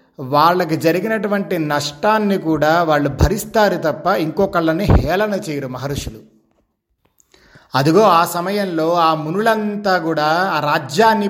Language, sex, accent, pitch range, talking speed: Telugu, male, native, 150-200 Hz, 100 wpm